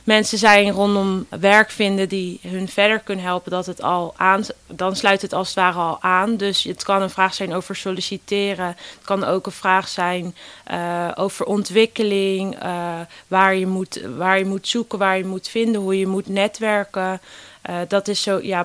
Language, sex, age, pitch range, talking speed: Dutch, female, 20-39, 185-205 Hz, 195 wpm